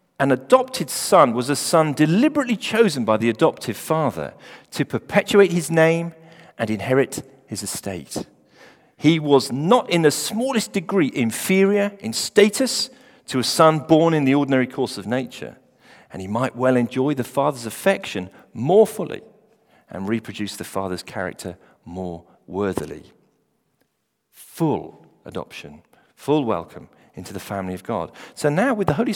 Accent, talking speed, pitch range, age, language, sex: British, 145 wpm, 130-220 Hz, 40-59, English, male